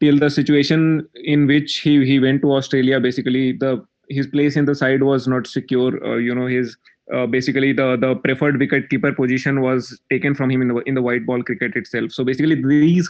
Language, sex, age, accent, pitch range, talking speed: English, male, 20-39, Indian, 130-155 Hz, 215 wpm